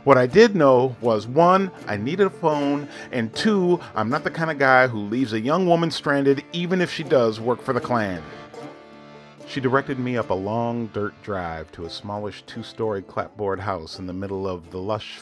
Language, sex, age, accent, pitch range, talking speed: English, male, 40-59, American, 95-150 Hz, 205 wpm